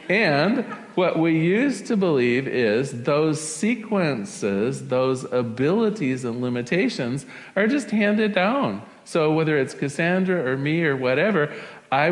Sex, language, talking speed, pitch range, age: male, English, 130 wpm, 125-170 Hz, 40-59